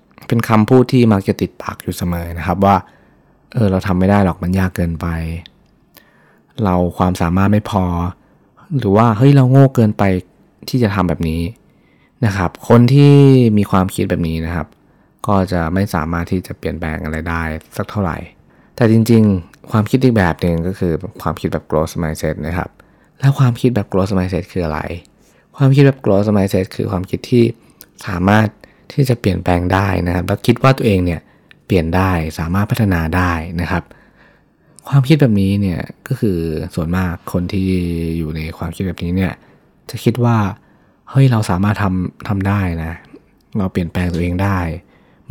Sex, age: male, 20-39